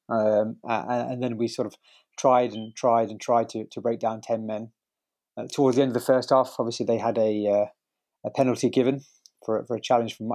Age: 30-49